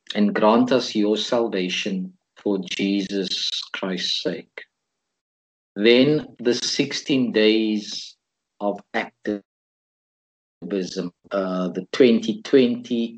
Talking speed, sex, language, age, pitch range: 80 wpm, male, English, 50-69, 100-130 Hz